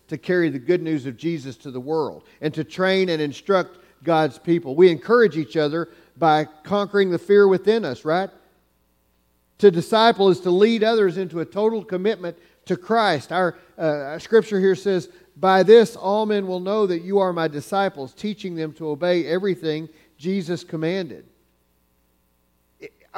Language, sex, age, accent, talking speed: English, male, 40-59, American, 165 wpm